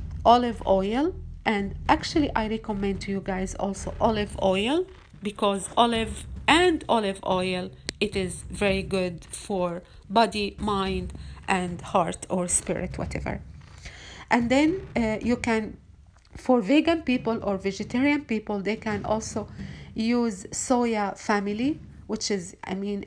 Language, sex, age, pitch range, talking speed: Arabic, female, 40-59, 190-240 Hz, 130 wpm